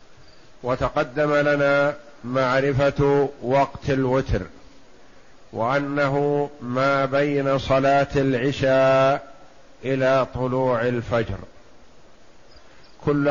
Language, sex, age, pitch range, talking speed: Arabic, male, 50-69, 130-145 Hz, 65 wpm